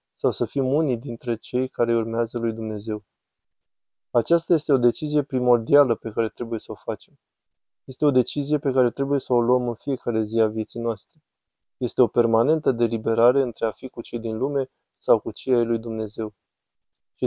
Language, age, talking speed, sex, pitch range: Romanian, 20-39, 190 wpm, male, 115-130 Hz